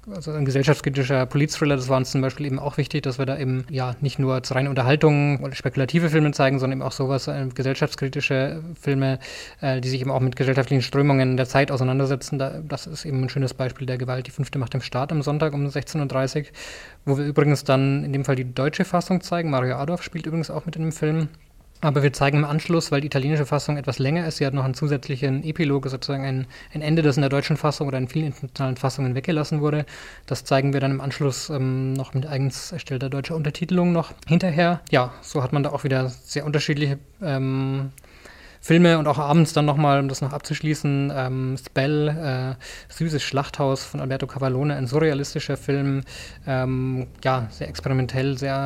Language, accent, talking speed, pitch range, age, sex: German, German, 200 wpm, 130-150 Hz, 20-39, male